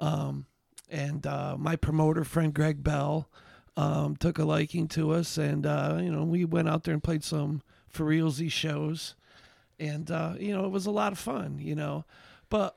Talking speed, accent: 195 wpm, American